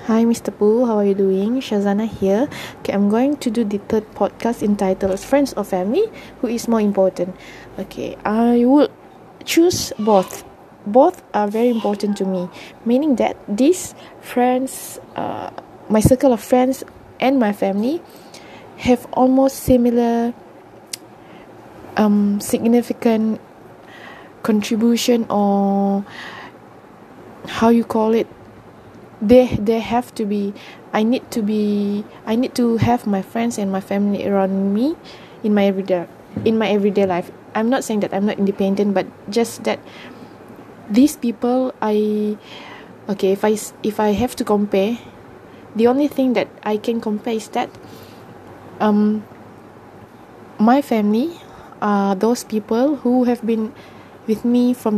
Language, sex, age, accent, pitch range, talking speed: English, female, 20-39, Malaysian, 205-245 Hz, 140 wpm